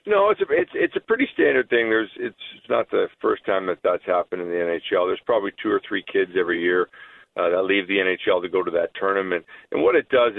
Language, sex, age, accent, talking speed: English, male, 40-59, American, 250 wpm